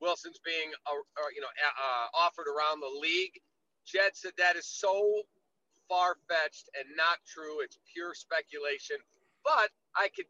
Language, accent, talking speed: English, American, 150 wpm